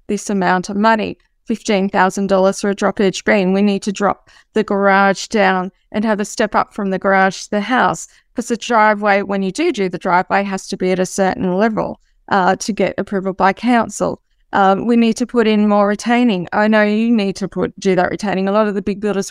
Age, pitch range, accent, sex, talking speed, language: 20-39, 195-230 Hz, Australian, female, 225 wpm, English